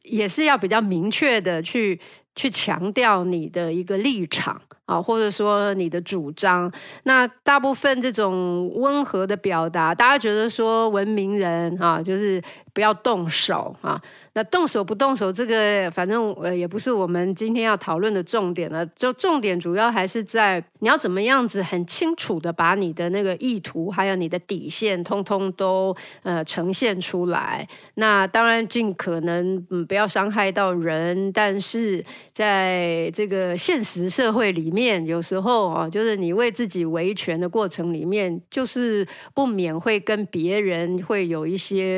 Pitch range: 180-225 Hz